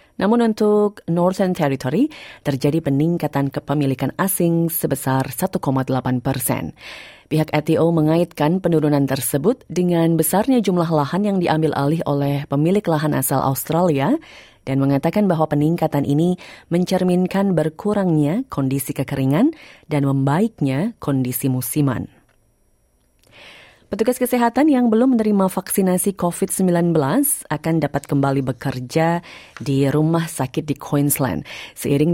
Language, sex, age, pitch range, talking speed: Indonesian, female, 30-49, 140-185 Hz, 110 wpm